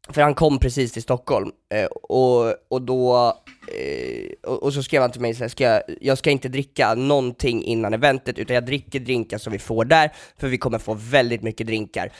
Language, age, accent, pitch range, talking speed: Swedish, 10-29, native, 125-160 Hz, 195 wpm